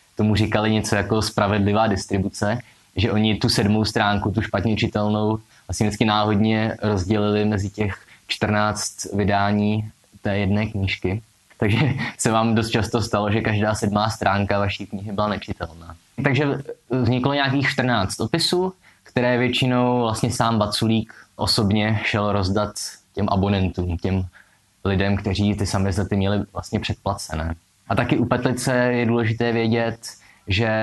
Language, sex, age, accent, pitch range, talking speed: Czech, male, 20-39, native, 100-115 Hz, 140 wpm